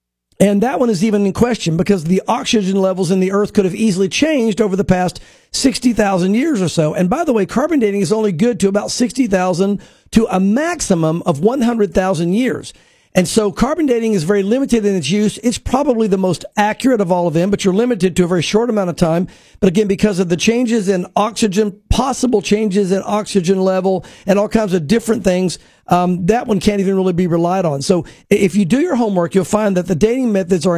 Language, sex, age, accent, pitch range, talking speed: English, male, 50-69, American, 185-225 Hz, 220 wpm